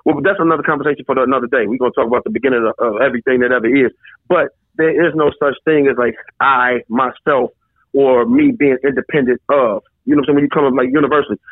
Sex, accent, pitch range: male, American, 145-175 Hz